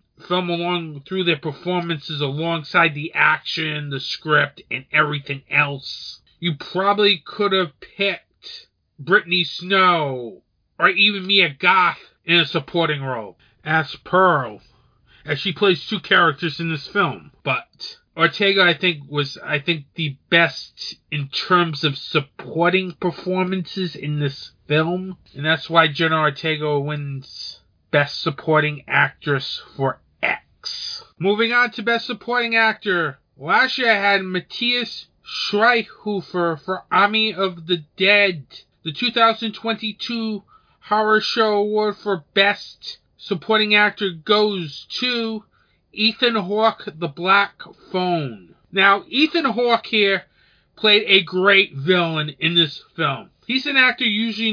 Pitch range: 155-205 Hz